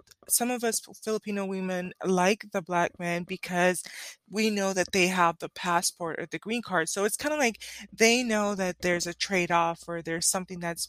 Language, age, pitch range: English, 20-39, 175-220 Hz